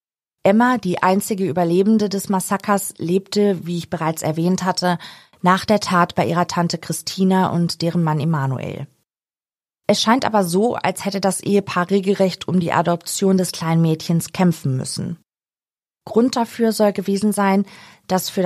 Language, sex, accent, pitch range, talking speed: German, female, German, 170-200 Hz, 155 wpm